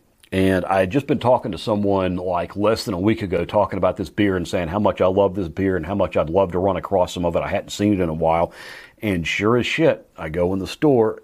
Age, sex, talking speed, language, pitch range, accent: 40-59, male, 285 wpm, English, 90-110 Hz, American